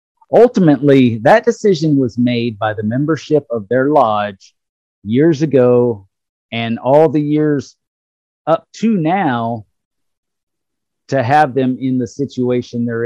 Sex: male